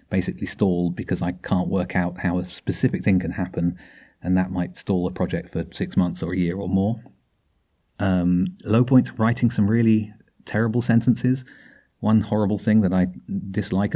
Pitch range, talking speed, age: 90-105 Hz, 175 wpm, 30-49